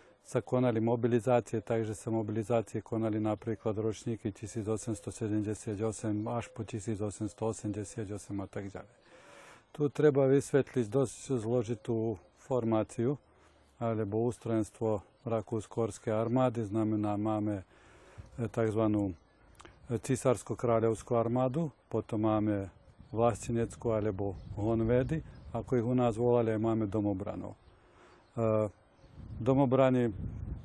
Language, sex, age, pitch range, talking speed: Slovak, male, 40-59, 105-120 Hz, 85 wpm